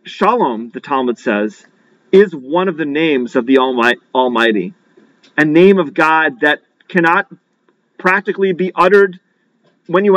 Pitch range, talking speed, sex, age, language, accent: 145-195 Hz, 140 wpm, male, 40-59, English, American